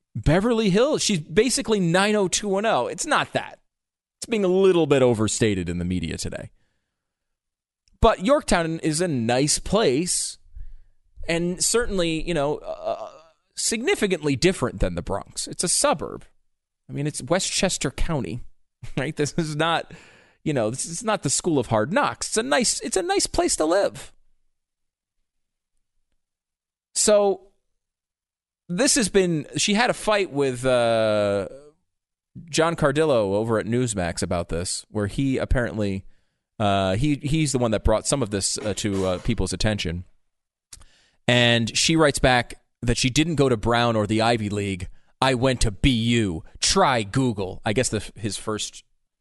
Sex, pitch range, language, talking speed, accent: male, 100-170 Hz, English, 150 wpm, American